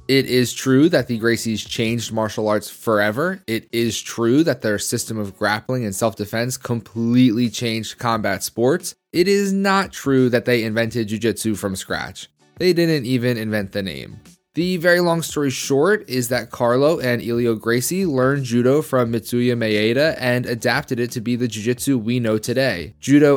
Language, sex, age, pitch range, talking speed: English, male, 20-39, 115-145 Hz, 175 wpm